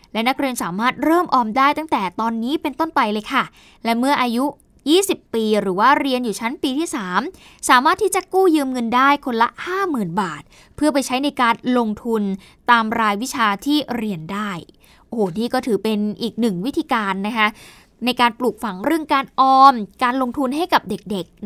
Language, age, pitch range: Thai, 20-39, 220-300 Hz